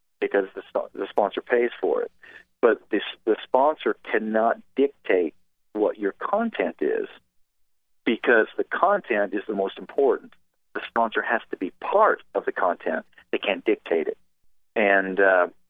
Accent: American